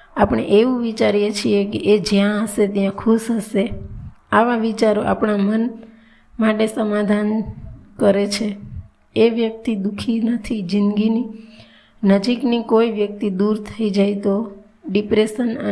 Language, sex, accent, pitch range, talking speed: Gujarati, female, native, 195-220 Hz, 110 wpm